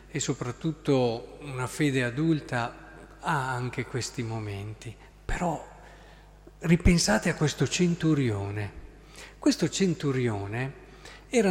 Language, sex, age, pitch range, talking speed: Italian, male, 50-69, 125-175 Hz, 90 wpm